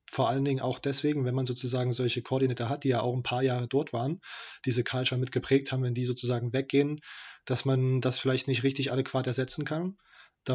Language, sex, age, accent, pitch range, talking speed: German, male, 20-39, German, 125-140 Hz, 210 wpm